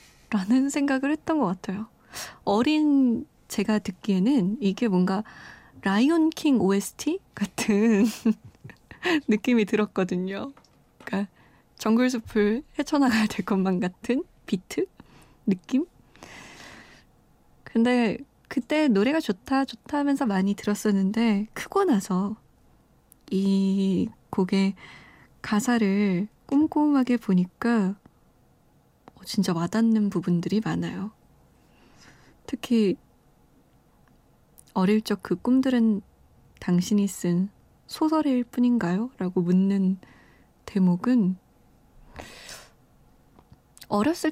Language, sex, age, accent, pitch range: Korean, female, 20-39, native, 195-265 Hz